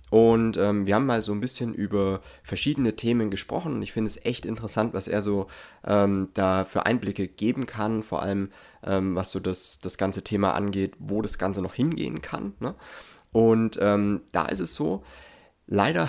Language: German